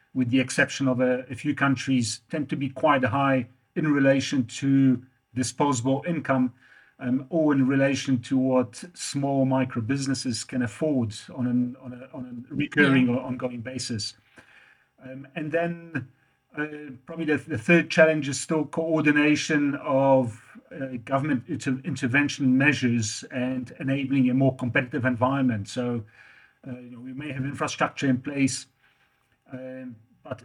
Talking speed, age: 135 wpm, 40-59